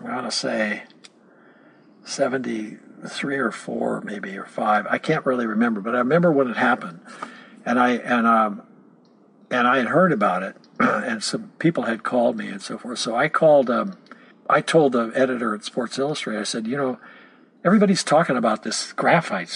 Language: English